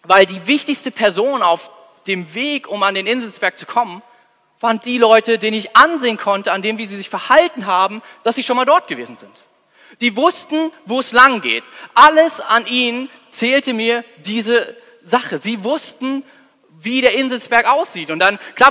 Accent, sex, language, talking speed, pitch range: German, male, German, 180 wpm, 195-255 Hz